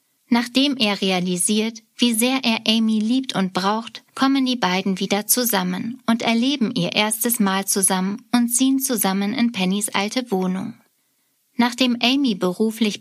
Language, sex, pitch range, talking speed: German, female, 195-245 Hz, 145 wpm